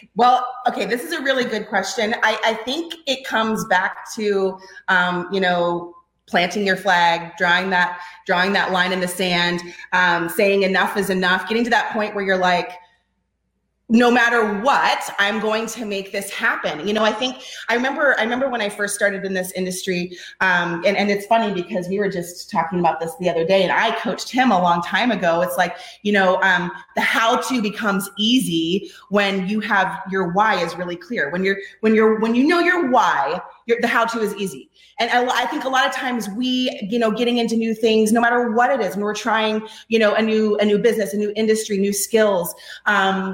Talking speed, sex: 215 wpm, female